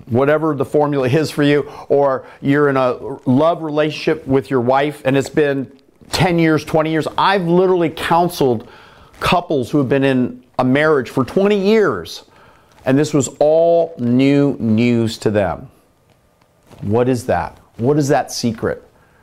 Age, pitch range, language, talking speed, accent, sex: 40-59, 130-170 Hz, English, 155 wpm, American, male